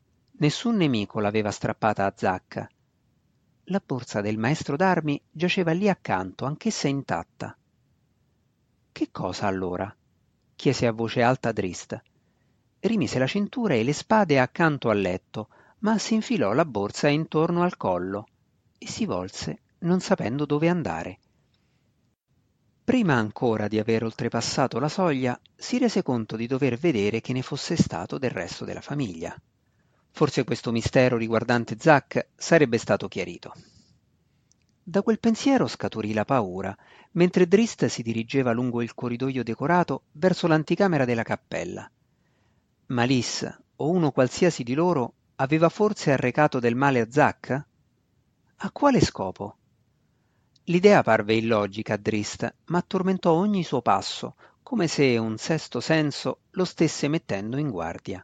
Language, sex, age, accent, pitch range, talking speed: Italian, male, 50-69, native, 115-170 Hz, 135 wpm